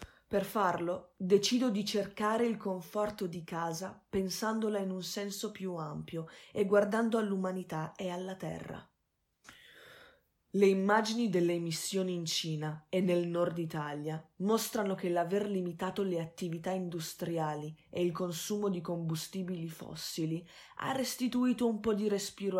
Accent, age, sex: native, 20-39, female